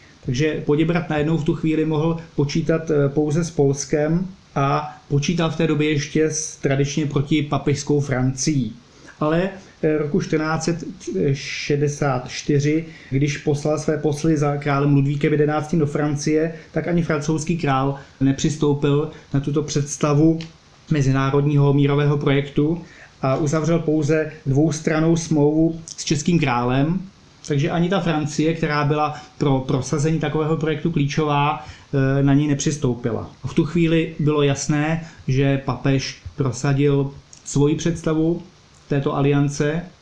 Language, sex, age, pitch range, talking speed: Slovak, male, 30-49, 140-160 Hz, 120 wpm